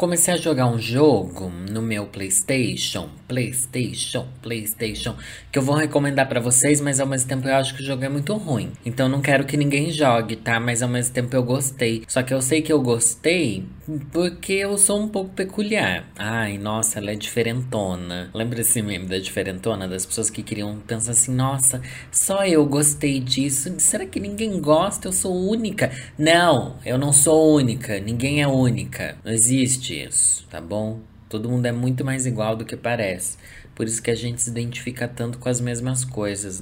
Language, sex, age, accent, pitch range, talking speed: Portuguese, male, 20-39, Brazilian, 110-140 Hz, 190 wpm